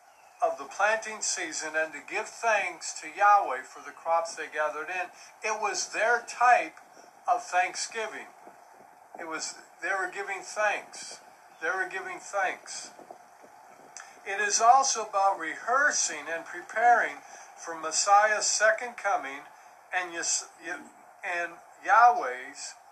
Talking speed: 120 wpm